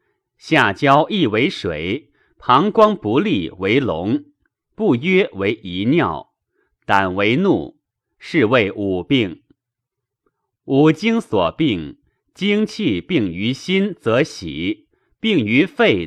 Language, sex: Chinese, male